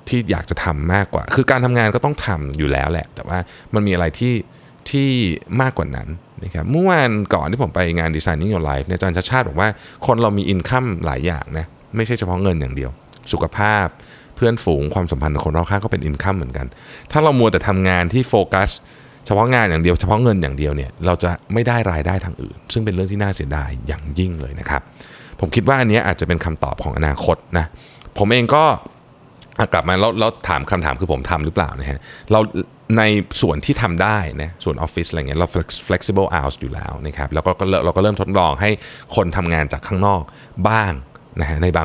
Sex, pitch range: male, 80-110 Hz